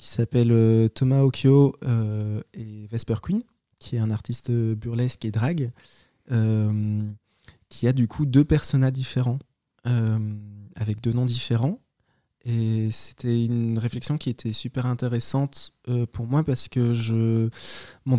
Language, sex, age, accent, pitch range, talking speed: French, male, 20-39, French, 115-130 Hz, 145 wpm